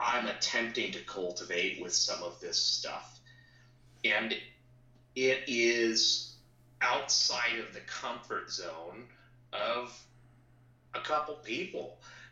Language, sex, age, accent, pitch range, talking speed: English, male, 30-49, American, 115-125 Hz, 100 wpm